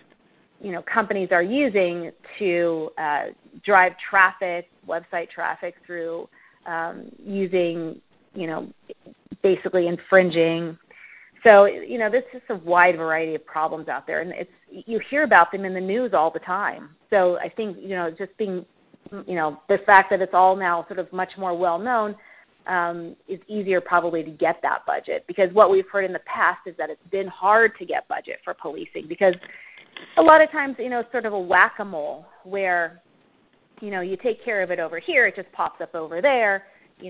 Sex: female